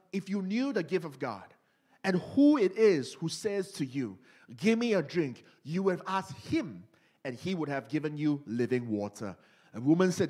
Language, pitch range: English, 145-200 Hz